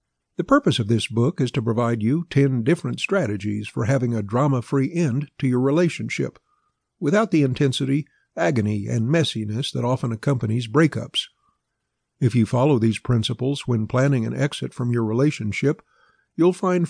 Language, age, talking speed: English, 60-79, 155 wpm